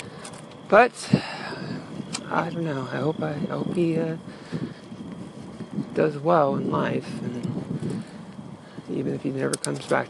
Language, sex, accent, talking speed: English, male, American, 130 wpm